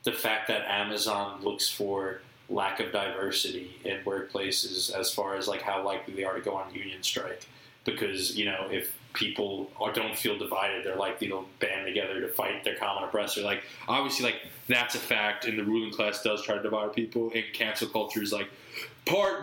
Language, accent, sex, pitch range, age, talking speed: English, American, male, 110-145 Hz, 20-39, 195 wpm